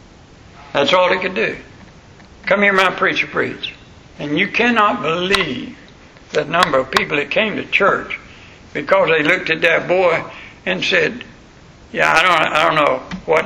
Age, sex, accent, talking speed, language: 60-79, male, American, 165 wpm, English